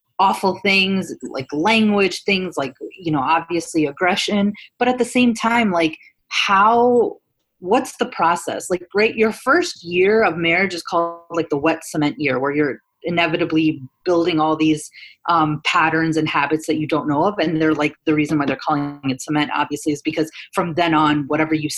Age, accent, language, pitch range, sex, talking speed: 30-49, American, English, 155-200 Hz, female, 185 wpm